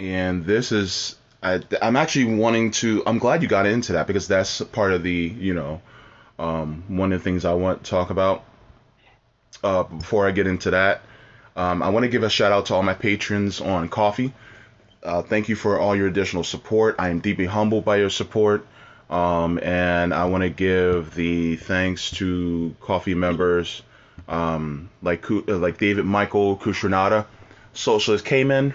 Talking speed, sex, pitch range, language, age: 180 wpm, male, 90-115 Hz, English, 20-39